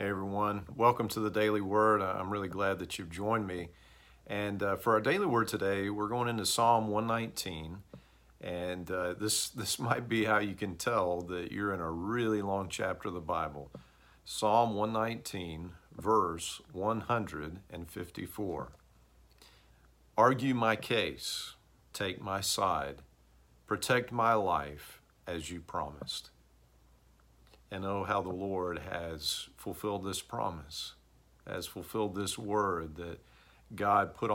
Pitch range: 80-105 Hz